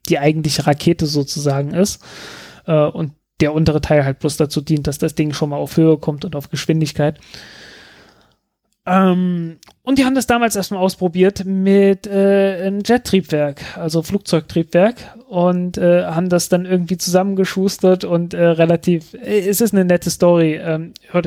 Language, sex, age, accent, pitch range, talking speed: German, male, 30-49, German, 155-185 Hz, 160 wpm